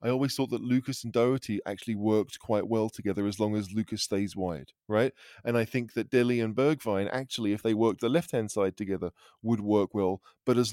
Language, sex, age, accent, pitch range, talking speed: English, male, 20-39, British, 100-125 Hz, 220 wpm